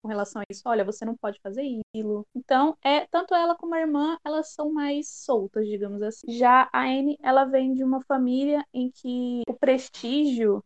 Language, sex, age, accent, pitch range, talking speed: Portuguese, female, 20-39, Brazilian, 220-275 Hz, 190 wpm